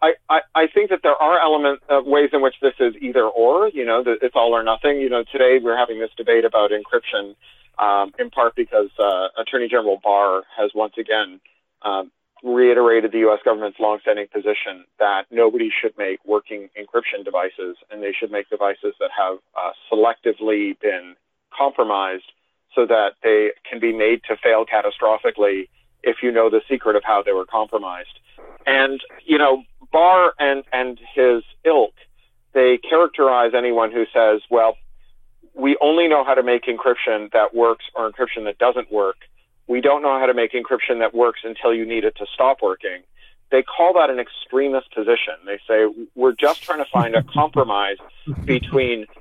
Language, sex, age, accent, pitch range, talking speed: English, male, 40-59, American, 110-155 Hz, 180 wpm